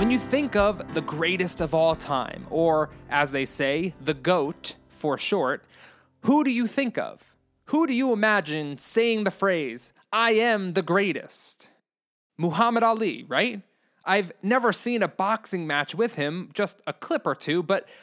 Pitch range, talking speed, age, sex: 160-230 Hz, 165 wpm, 20-39, male